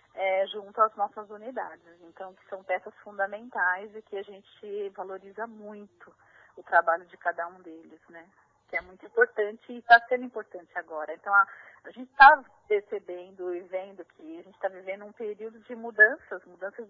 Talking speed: 180 wpm